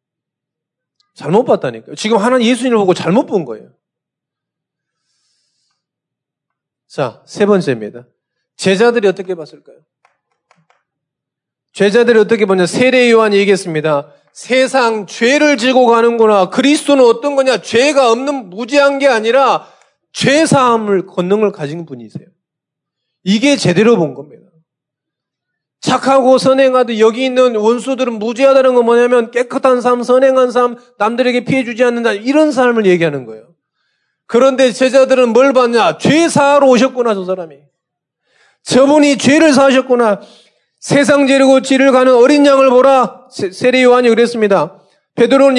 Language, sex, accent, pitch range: Korean, male, native, 195-265 Hz